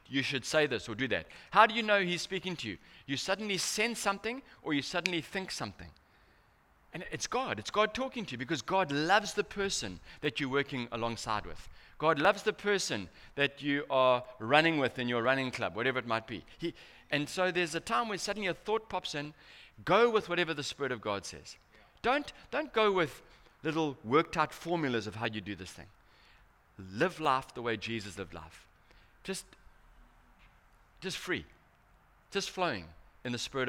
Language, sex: English, male